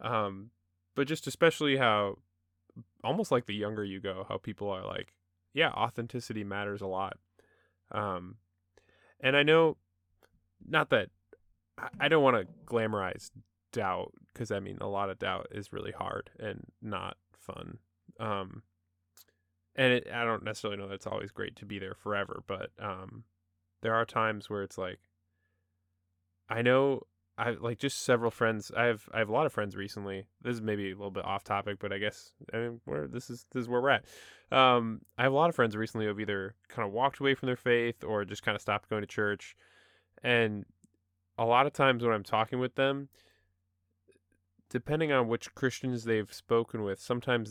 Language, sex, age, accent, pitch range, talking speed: English, male, 10-29, American, 95-120 Hz, 190 wpm